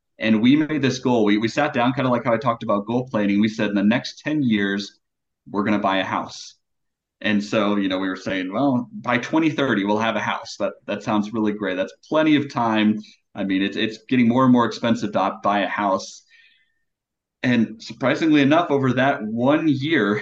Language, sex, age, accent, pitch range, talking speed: English, male, 30-49, American, 105-130 Hz, 220 wpm